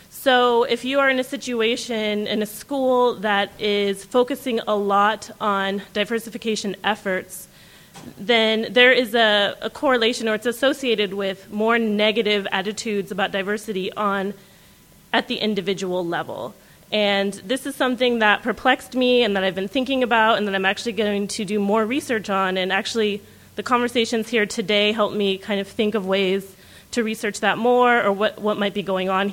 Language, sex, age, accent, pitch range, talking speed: English, female, 30-49, American, 200-235 Hz, 175 wpm